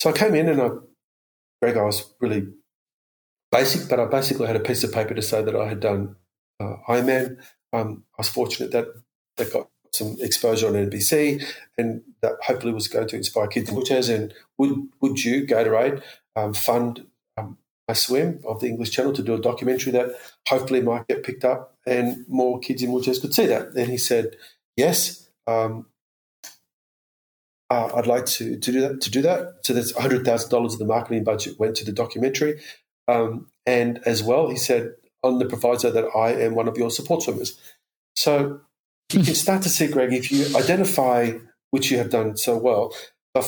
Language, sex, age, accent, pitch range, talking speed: English, male, 40-59, Australian, 115-135 Hz, 195 wpm